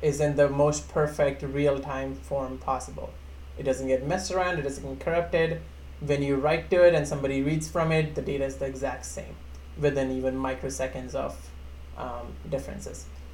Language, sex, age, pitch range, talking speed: English, male, 20-39, 130-155 Hz, 175 wpm